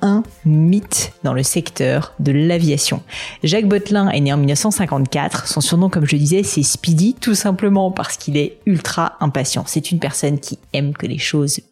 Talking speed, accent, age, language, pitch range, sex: 185 wpm, French, 30-49, French, 145-185 Hz, female